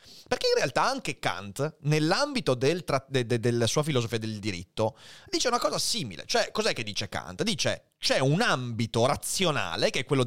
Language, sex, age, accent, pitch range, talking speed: Italian, male, 30-49, native, 120-175 Hz, 185 wpm